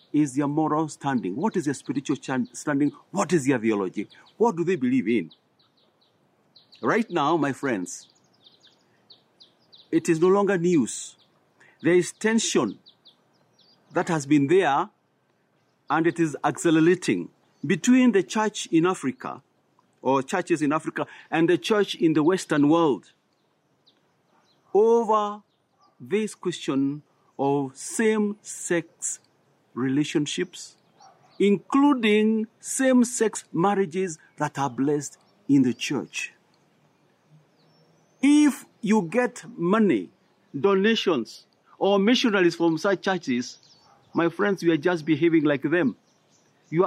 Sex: male